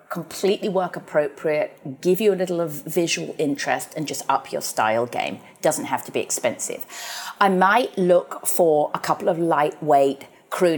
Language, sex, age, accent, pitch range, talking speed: English, female, 40-59, British, 150-195 Hz, 165 wpm